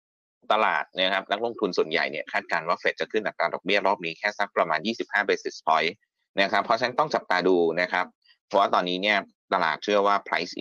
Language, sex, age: Thai, male, 20-39